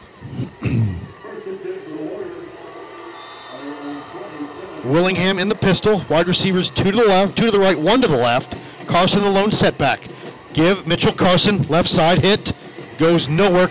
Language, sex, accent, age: English, male, American, 50-69